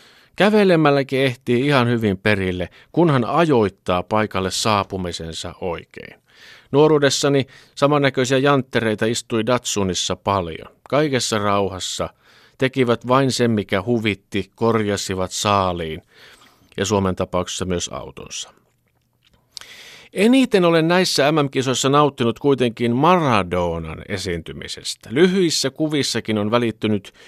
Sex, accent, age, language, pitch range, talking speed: male, native, 50-69, Finnish, 95-140 Hz, 90 wpm